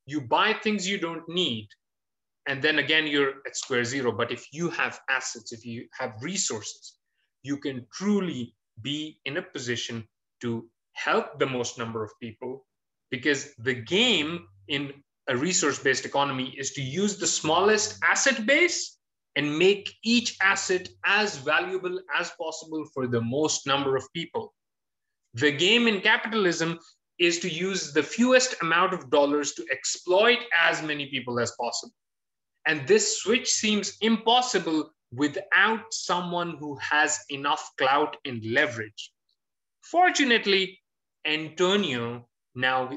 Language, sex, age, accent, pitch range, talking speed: English, male, 30-49, Indian, 130-195 Hz, 140 wpm